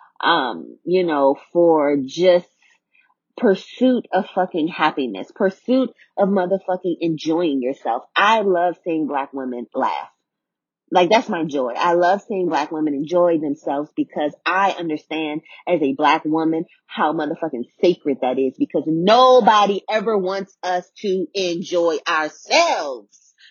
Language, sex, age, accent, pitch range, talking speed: English, female, 30-49, American, 170-255 Hz, 130 wpm